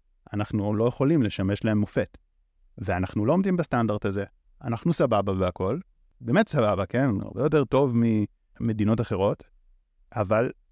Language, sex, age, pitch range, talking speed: Hebrew, male, 30-49, 90-135 Hz, 130 wpm